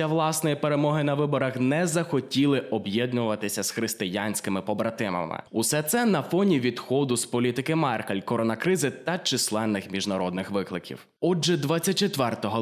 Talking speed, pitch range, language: 120 wpm, 115-175 Hz, Ukrainian